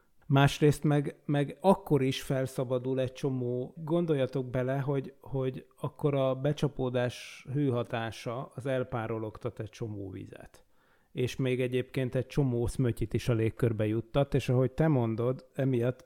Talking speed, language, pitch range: 135 wpm, Hungarian, 115-135 Hz